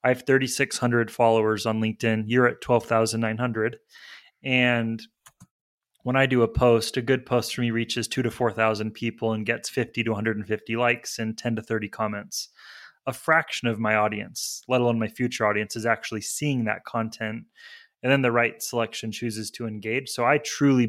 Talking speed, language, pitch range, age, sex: 180 wpm, English, 110-125 Hz, 20-39, male